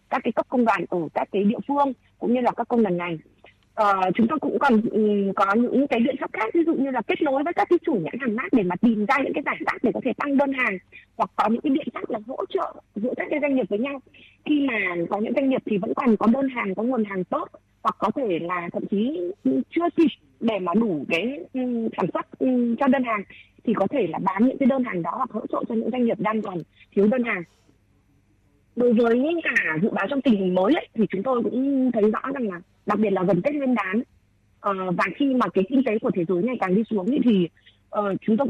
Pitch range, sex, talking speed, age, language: 195-260 Hz, female, 265 wpm, 20-39, Vietnamese